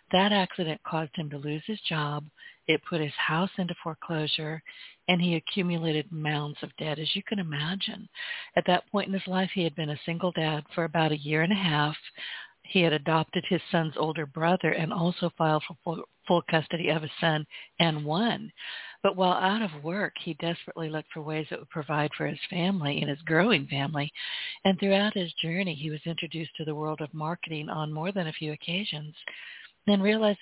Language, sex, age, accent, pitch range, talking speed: English, female, 60-79, American, 155-180 Hz, 200 wpm